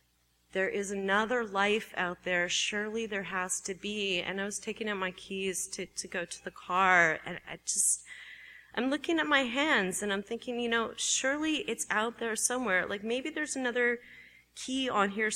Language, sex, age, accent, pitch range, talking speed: English, female, 30-49, American, 190-245 Hz, 190 wpm